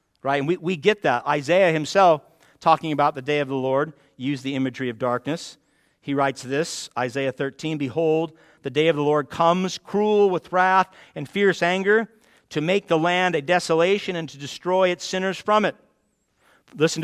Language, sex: English, male